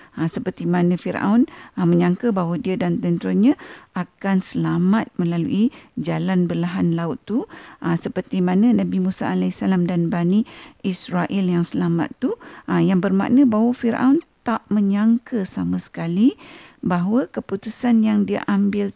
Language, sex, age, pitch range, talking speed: Malay, female, 50-69, 175-245 Hz, 135 wpm